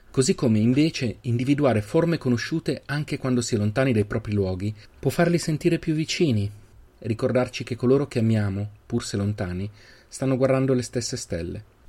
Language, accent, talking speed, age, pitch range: Italian, native, 165 wpm, 30-49, 100-130 Hz